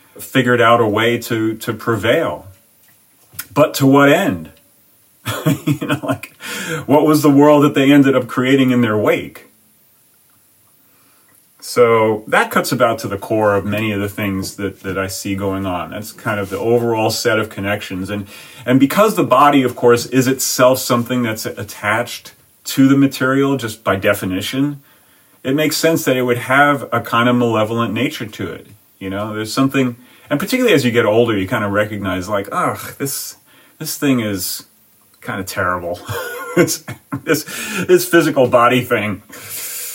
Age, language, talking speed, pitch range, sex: 40-59, English, 170 wpm, 105-135 Hz, male